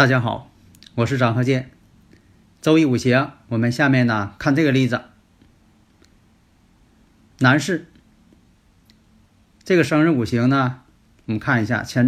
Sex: male